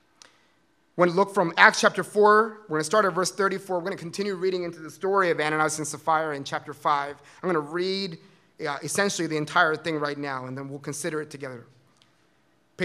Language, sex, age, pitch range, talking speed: English, male, 30-49, 155-205 Hz, 225 wpm